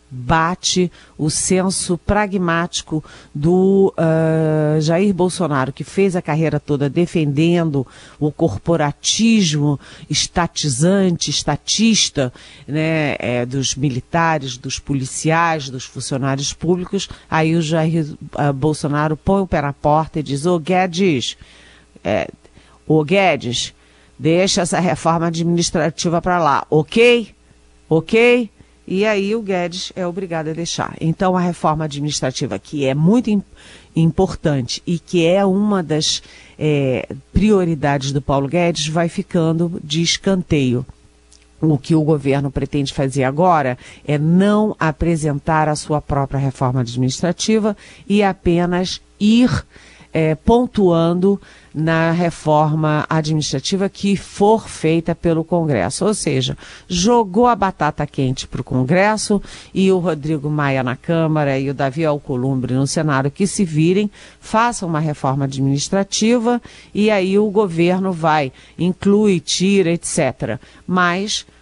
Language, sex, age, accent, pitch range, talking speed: Portuguese, female, 50-69, Brazilian, 145-185 Hz, 125 wpm